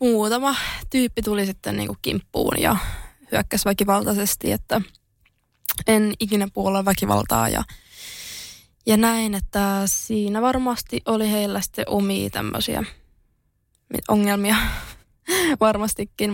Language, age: Finnish, 20-39